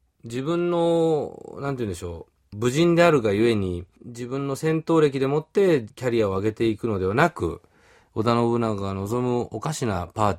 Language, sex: Japanese, male